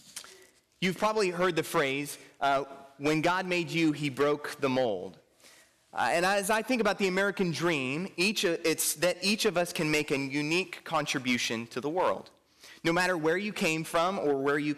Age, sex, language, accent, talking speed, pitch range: 30-49, male, English, American, 190 wpm, 145-190 Hz